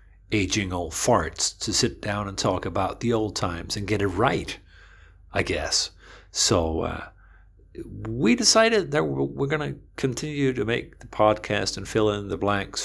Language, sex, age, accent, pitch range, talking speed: English, male, 50-69, American, 95-120 Hz, 165 wpm